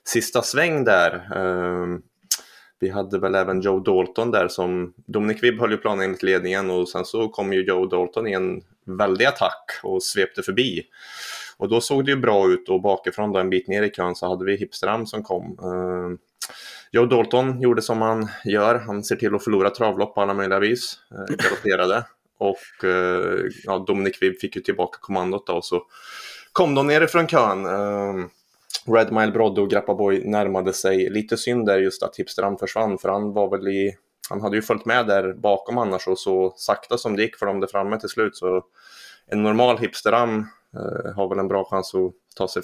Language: Swedish